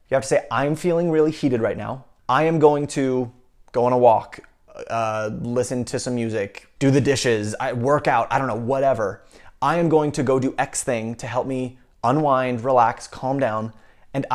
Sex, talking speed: male, 205 wpm